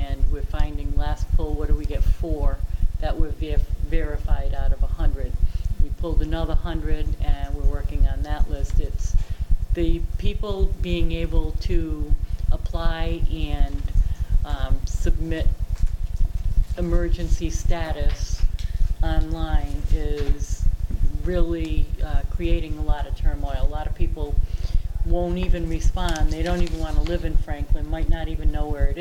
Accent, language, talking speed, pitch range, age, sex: American, English, 145 wpm, 80-90 Hz, 40-59, female